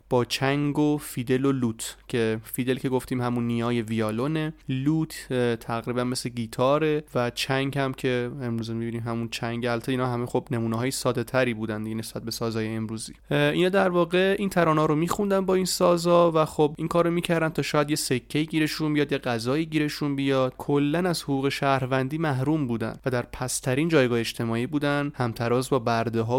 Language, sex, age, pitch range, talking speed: Persian, male, 30-49, 120-155 Hz, 175 wpm